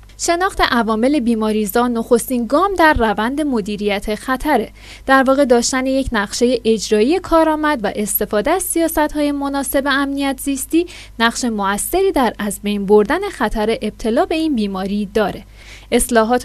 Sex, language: female, Persian